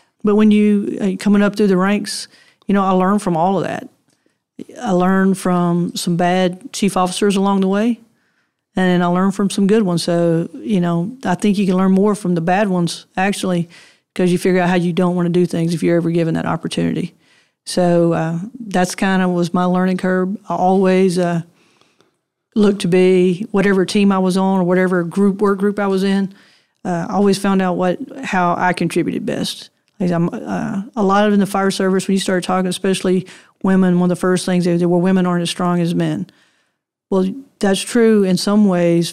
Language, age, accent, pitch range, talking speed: English, 40-59, American, 175-200 Hz, 210 wpm